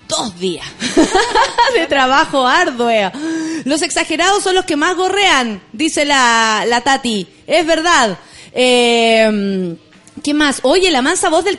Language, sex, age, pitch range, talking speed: Spanish, female, 30-49, 230-335 Hz, 135 wpm